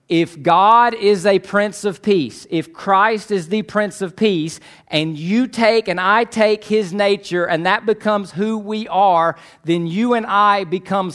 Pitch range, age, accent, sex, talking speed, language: 150-200 Hz, 40-59, American, male, 180 wpm, English